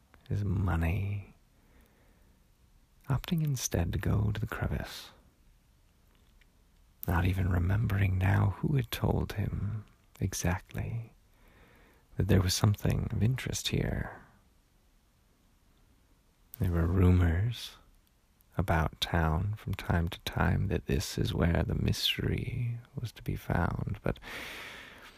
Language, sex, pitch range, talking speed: English, male, 85-110 Hz, 105 wpm